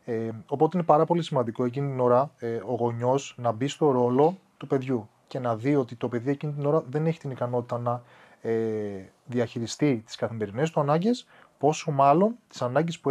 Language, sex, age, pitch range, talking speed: Greek, male, 30-49, 125-175 Hz, 195 wpm